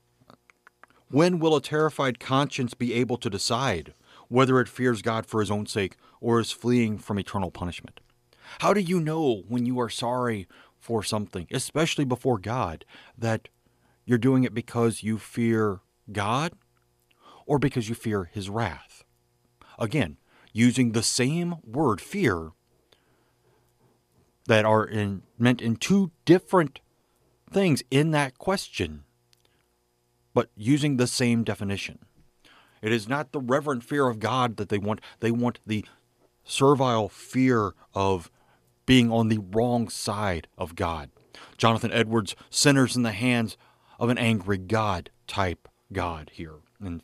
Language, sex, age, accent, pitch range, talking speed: English, male, 40-59, American, 100-125 Hz, 140 wpm